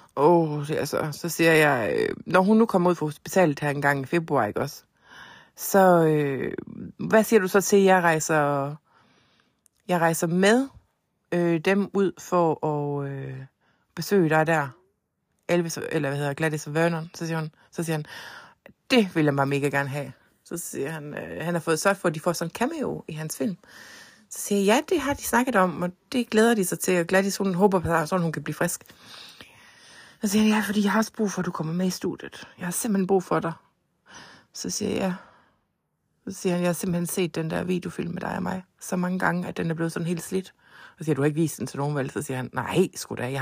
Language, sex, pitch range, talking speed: Danish, female, 150-195 Hz, 235 wpm